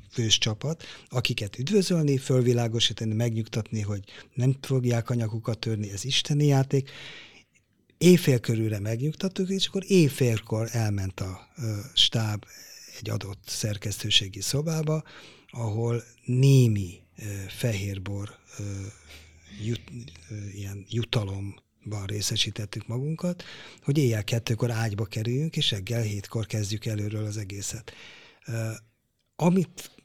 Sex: male